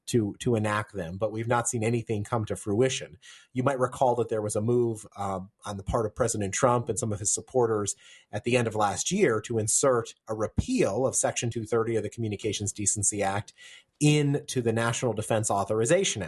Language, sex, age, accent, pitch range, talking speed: English, male, 30-49, American, 110-130 Hz, 205 wpm